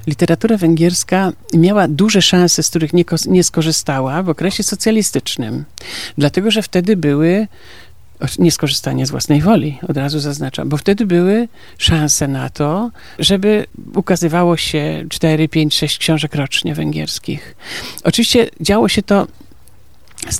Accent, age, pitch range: native, 50-69, 150-180 Hz